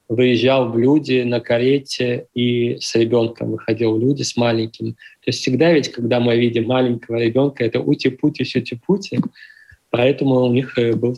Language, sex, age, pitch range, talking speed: Russian, male, 20-39, 115-135 Hz, 165 wpm